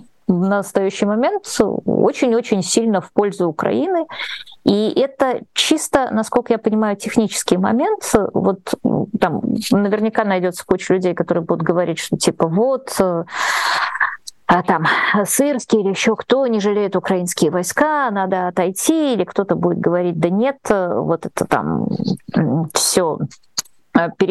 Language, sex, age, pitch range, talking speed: Russian, female, 20-39, 180-245 Hz, 125 wpm